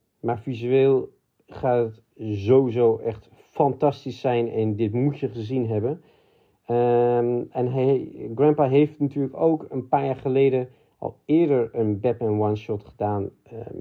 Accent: Dutch